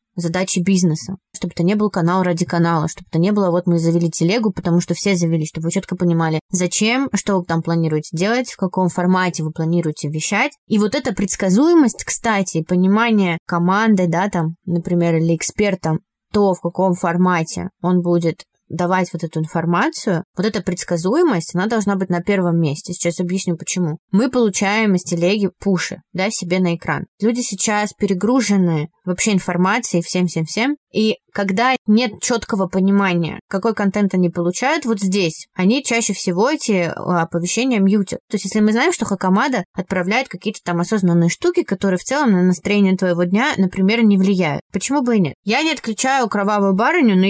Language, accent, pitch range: Russian, native, 175-210 Hz